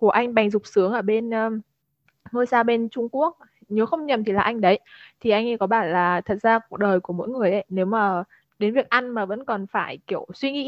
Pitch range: 205-255 Hz